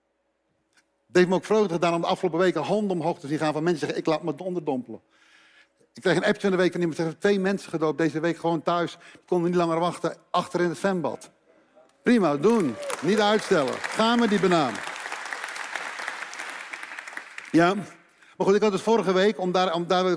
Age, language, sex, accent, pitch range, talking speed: 50-69, Dutch, male, Dutch, 165-210 Hz, 210 wpm